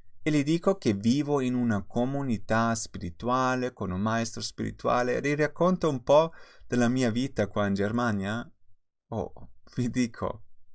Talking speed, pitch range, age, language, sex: 140 wpm, 100-120 Hz, 30-49, Italian, male